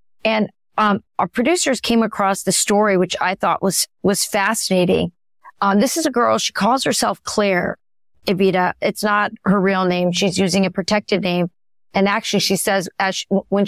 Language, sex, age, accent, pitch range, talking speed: English, female, 40-59, American, 185-215 Hz, 180 wpm